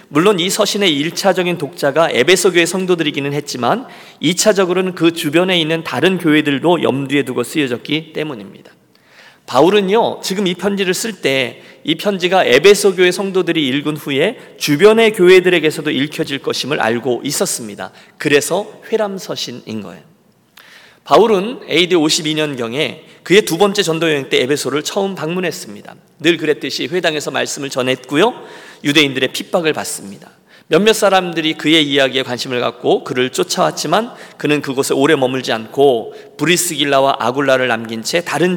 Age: 40-59